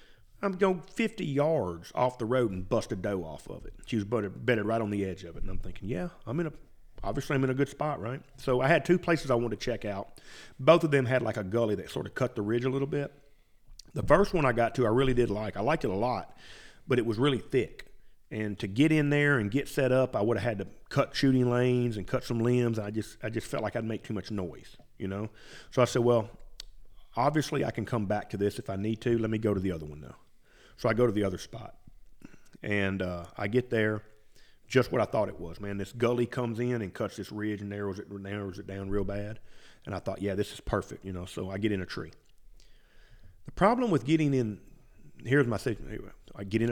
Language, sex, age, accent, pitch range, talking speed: English, male, 40-59, American, 100-135 Hz, 260 wpm